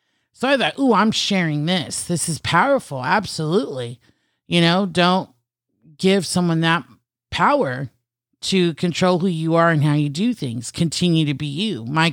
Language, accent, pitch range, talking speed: English, American, 130-180 Hz, 165 wpm